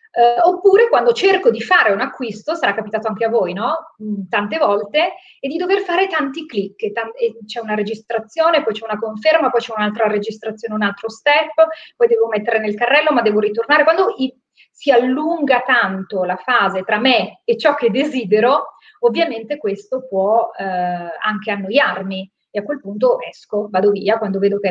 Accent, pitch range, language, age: native, 205-290 Hz, Italian, 30-49